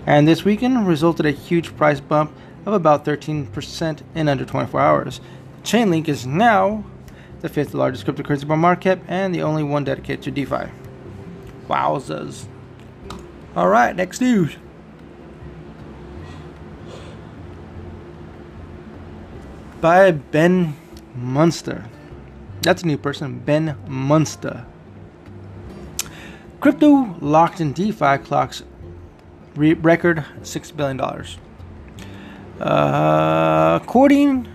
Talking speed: 100 wpm